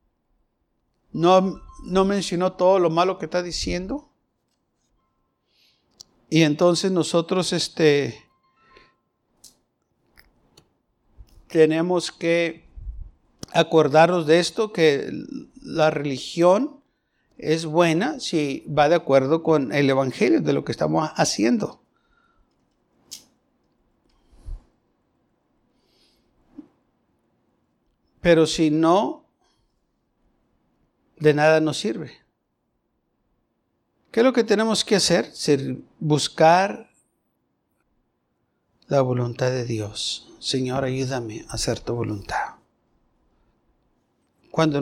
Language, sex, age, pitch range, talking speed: Spanish, male, 60-79, 145-180 Hz, 80 wpm